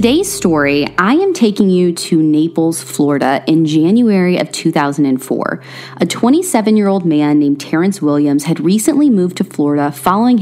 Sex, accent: female, American